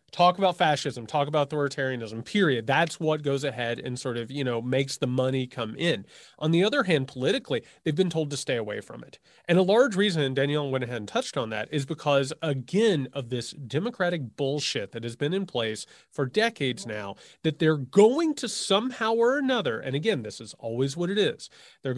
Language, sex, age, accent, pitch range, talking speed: English, male, 30-49, American, 135-205 Hz, 210 wpm